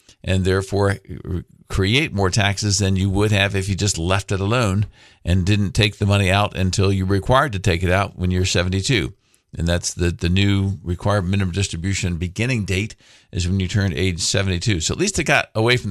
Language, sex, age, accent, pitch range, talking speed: English, male, 50-69, American, 95-110 Hz, 205 wpm